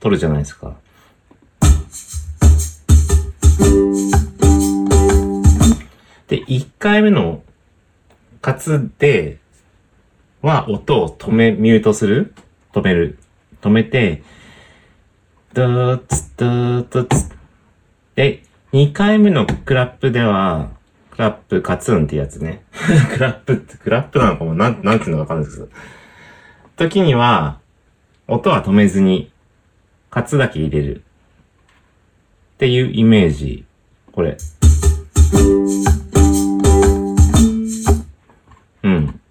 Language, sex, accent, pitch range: Japanese, male, native, 75-110 Hz